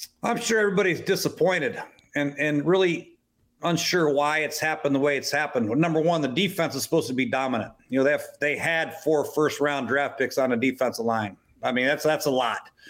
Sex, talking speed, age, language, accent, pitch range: male, 215 wpm, 50-69, English, American, 135-150 Hz